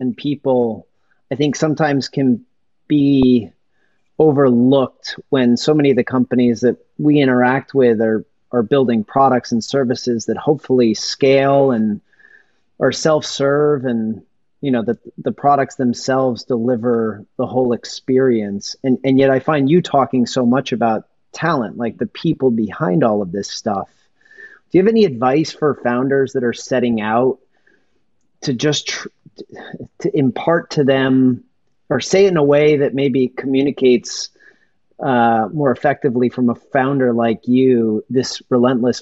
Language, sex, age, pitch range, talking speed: English, male, 30-49, 120-140 Hz, 150 wpm